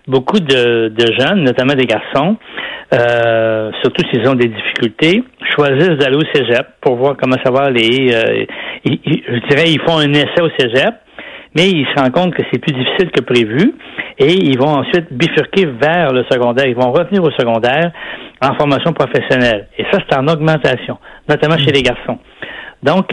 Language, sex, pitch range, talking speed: French, male, 125-155 Hz, 175 wpm